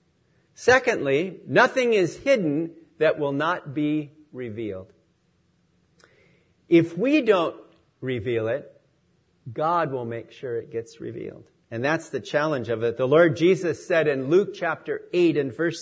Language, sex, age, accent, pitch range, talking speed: English, male, 50-69, American, 150-210 Hz, 140 wpm